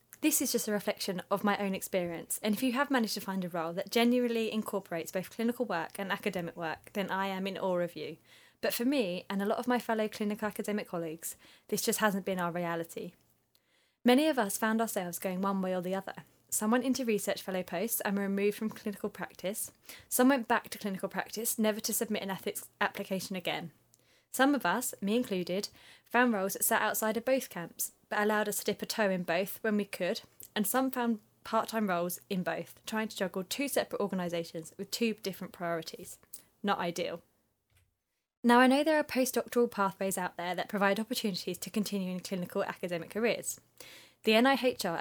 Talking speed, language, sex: 205 wpm, English, female